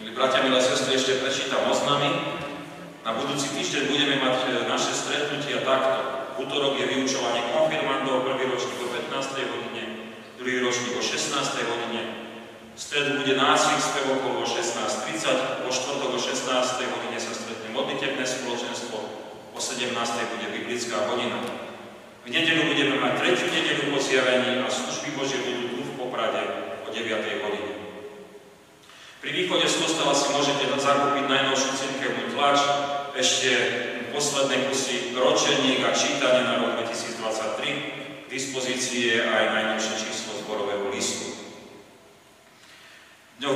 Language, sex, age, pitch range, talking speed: Slovak, male, 40-59, 120-140 Hz, 125 wpm